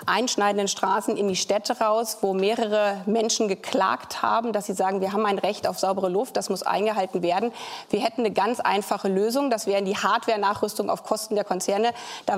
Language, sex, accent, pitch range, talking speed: German, female, German, 210-245 Hz, 195 wpm